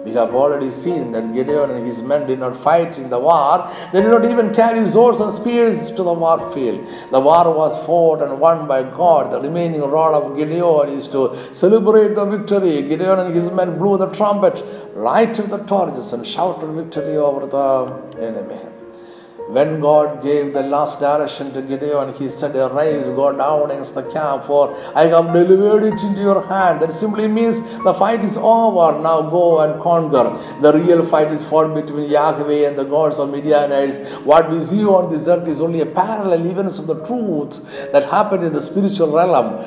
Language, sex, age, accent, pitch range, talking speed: Malayalam, male, 60-79, native, 140-195 Hz, 195 wpm